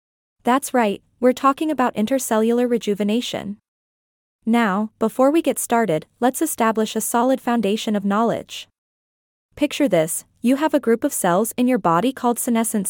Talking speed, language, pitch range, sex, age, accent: 150 wpm, English, 205-255 Hz, female, 20-39, American